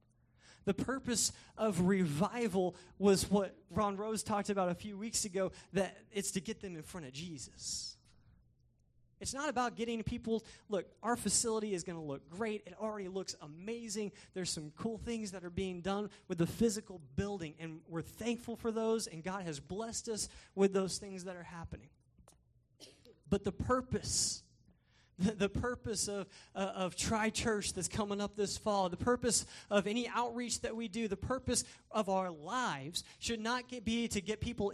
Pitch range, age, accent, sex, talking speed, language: 180-225 Hz, 20-39, American, male, 175 wpm, English